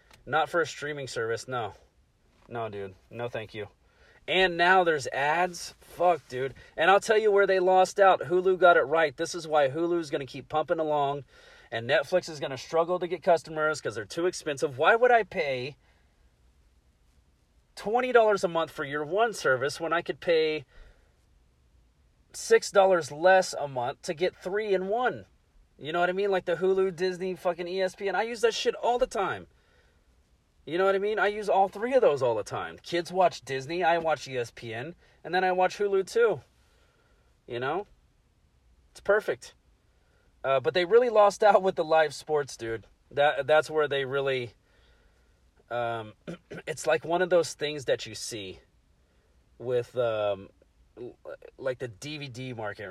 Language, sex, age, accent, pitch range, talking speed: English, male, 30-49, American, 120-190 Hz, 175 wpm